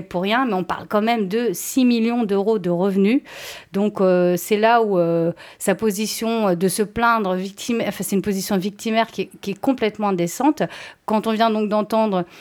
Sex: female